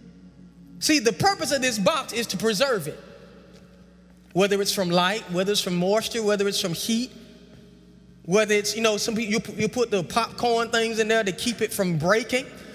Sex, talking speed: male, 190 wpm